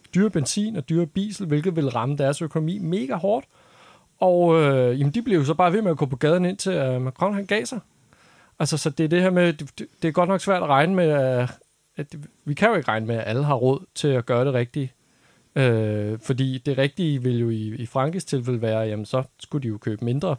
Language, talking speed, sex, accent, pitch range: Danish, 245 wpm, male, native, 130-170 Hz